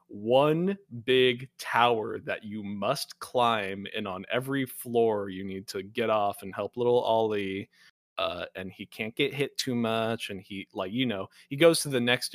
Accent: American